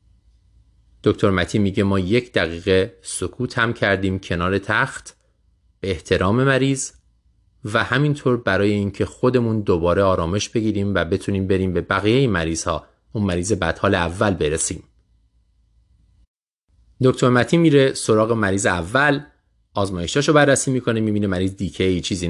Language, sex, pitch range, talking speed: Persian, male, 95-125 Hz, 130 wpm